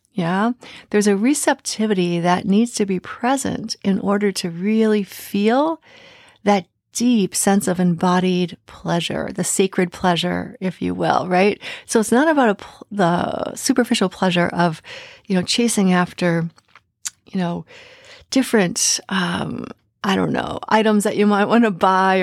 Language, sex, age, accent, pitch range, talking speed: English, female, 40-59, American, 180-225 Hz, 145 wpm